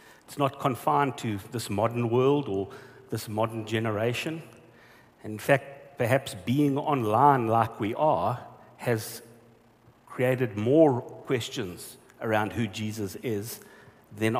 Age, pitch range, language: 60-79, 120-170 Hz, English